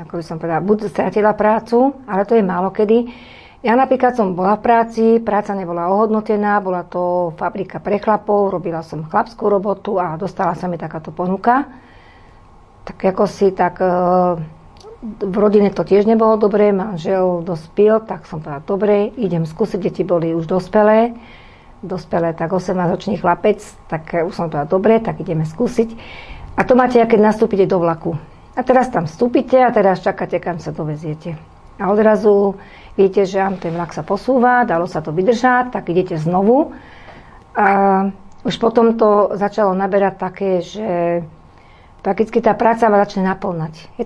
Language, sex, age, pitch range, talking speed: Slovak, female, 50-69, 175-215 Hz, 160 wpm